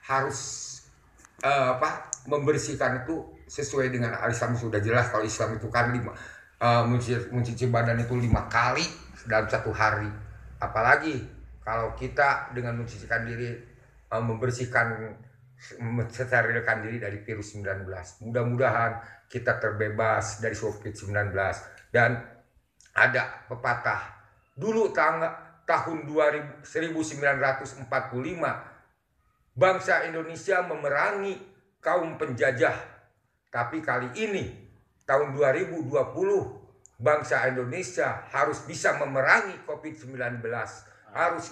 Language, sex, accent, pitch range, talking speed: Indonesian, male, native, 115-145 Hz, 95 wpm